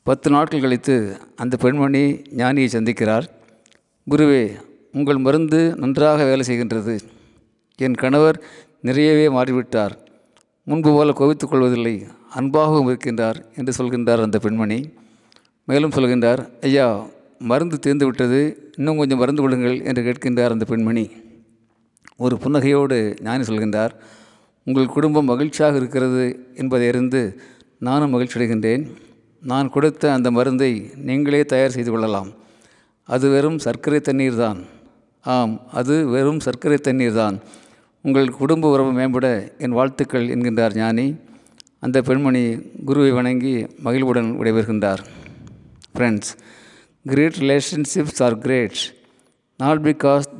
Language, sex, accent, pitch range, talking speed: Tamil, male, native, 115-140 Hz, 110 wpm